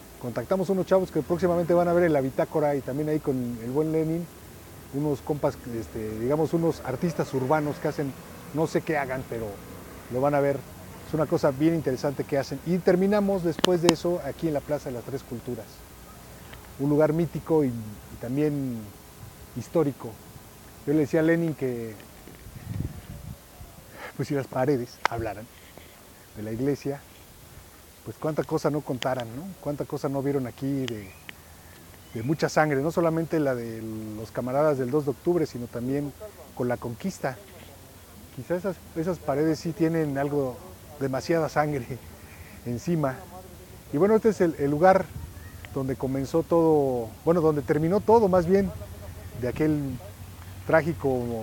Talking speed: 155 wpm